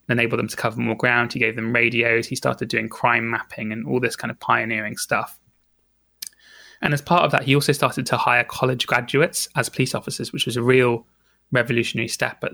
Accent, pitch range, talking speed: British, 115-130 Hz, 210 wpm